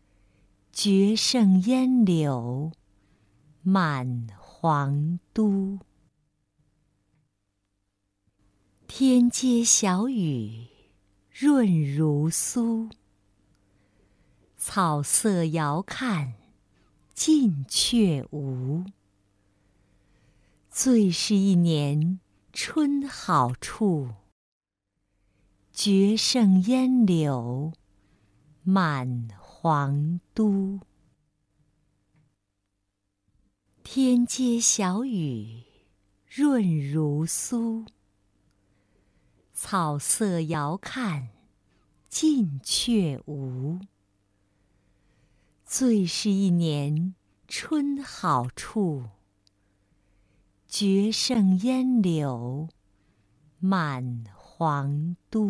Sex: female